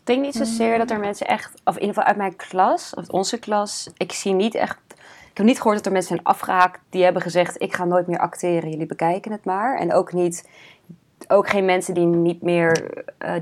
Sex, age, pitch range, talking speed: female, 20-39, 180-200 Hz, 235 wpm